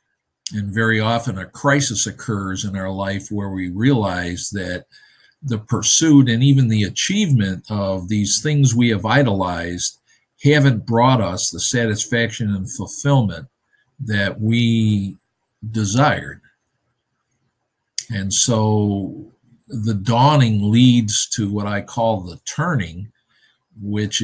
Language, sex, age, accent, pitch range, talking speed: English, male, 50-69, American, 100-125 Hz, 115 wpm